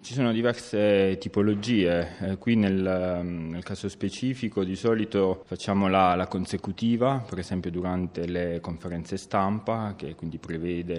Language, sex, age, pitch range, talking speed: Italian, male, 30-49, 85-100 Hz, 135 wpm